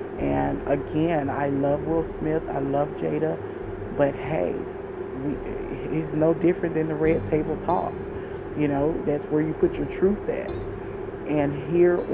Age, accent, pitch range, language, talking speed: 30-49, American, 140-170 Hz, English, 150 wpm